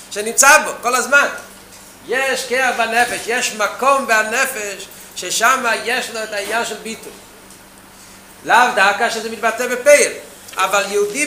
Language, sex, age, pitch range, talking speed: Hebrew, male, 40-59, 215-260 Hz, 130 wpm